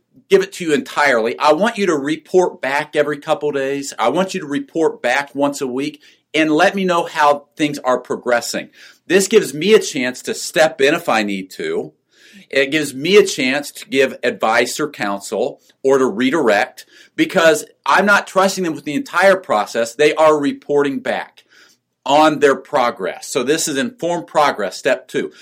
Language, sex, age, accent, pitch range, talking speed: English, male, 50-69, American, 140-195 Hz, 185 wpm